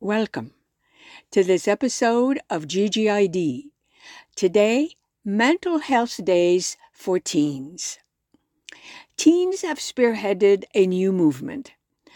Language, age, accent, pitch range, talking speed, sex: English, 60-79, American, 185-280 Hz, 90 wpm, female